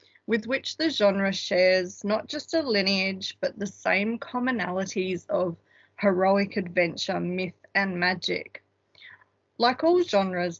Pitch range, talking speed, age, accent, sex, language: 180-220 Hz, 125 wpm, 20-39, Australian, female, English